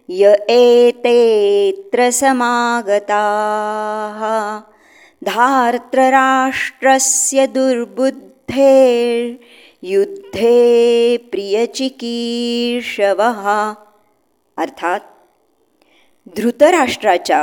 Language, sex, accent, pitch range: Marathi, male, native, 210-265 Hz